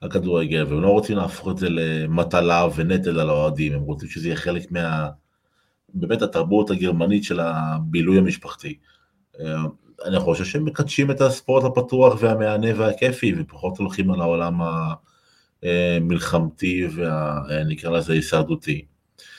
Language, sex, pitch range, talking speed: Hebrew, male, 80-100 Hz, 125 wpm